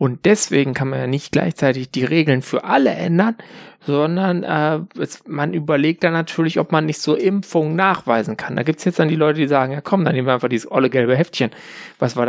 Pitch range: 125-165 Hz